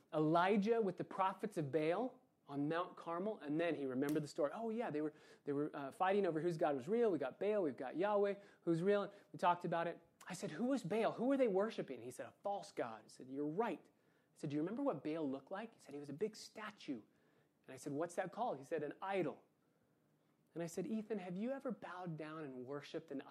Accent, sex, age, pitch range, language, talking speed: American, male, 30-49, 145-190 Hz, English, 245 wpm